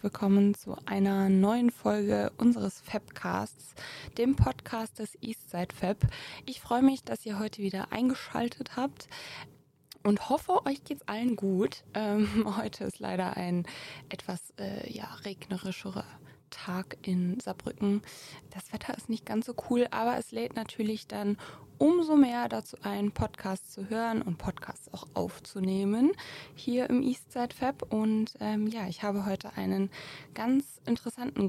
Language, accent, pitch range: German, German, 190-235 Hz